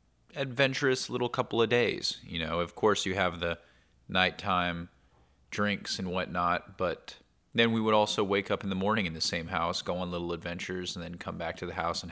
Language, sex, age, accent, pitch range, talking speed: English, male, 30-49, American, 85-105 Hz, 210 wpm